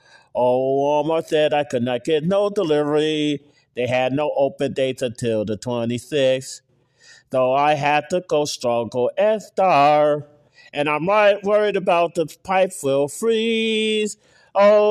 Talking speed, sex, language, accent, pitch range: 145 wpm, male, English, American, 135-200 Hz